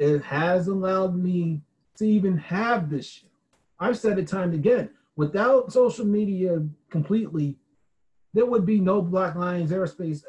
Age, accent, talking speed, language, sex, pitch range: 30-49, American, 150 wpm, English, male, 135-185 Hz